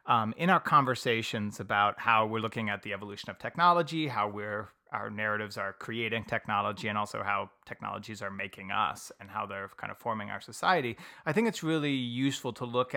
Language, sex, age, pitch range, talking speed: English, male, 30-49, 110-140 Hz, 190 wpm